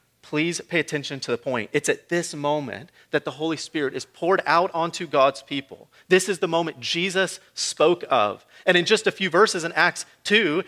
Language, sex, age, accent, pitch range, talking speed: English, male, 40-59, American, 155-195 Hz, 200 wpm